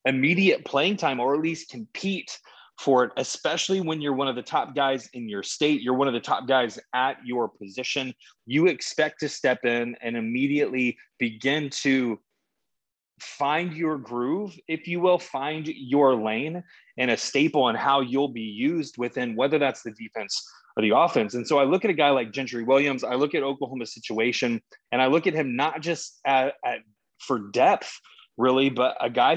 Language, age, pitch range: English, 20-39, 130-160 Hz